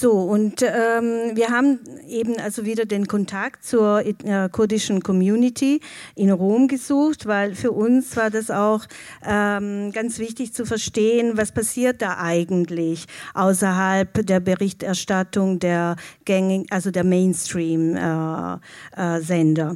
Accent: German